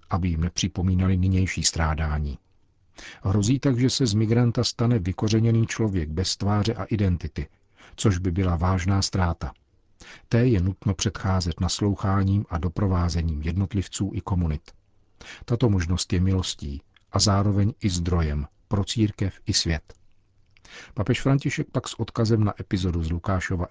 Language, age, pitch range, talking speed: Czech, 50-69, 90-105 Hz, 135 wpm